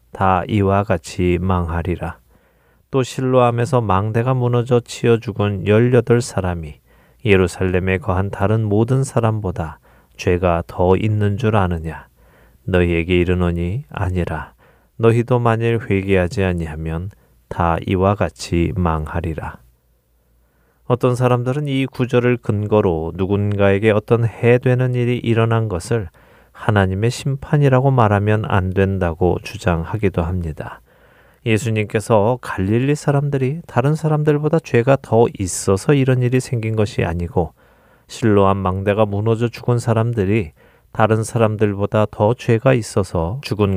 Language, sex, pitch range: Korean, male, 90-120 Hz